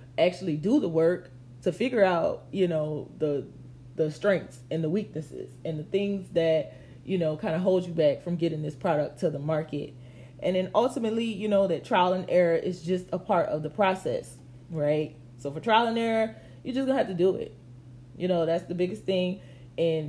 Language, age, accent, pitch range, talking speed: English, 20-39, American, 145-180 Hz, 205 wpm